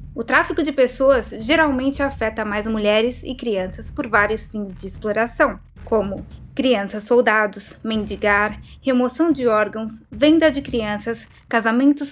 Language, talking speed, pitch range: English, 125 wpm, 225-290 Hz